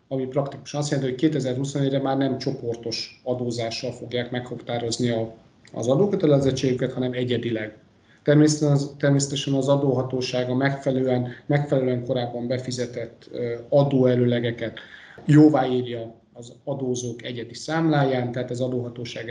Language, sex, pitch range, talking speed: Hungarian, male, 120-140 Hz, 105 wpm